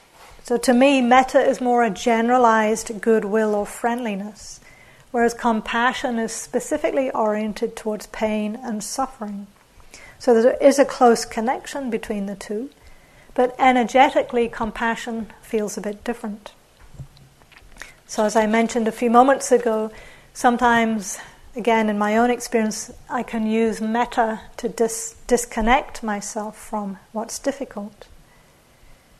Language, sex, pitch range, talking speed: English, female, 215-240 Hz, 125 wpm